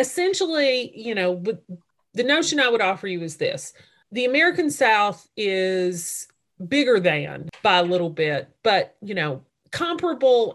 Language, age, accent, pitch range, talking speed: English, 30-49, American, 175-245 Hz, 140 wpm